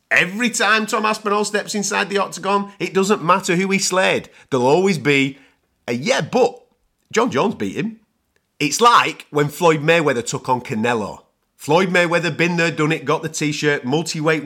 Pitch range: 145-210 Hz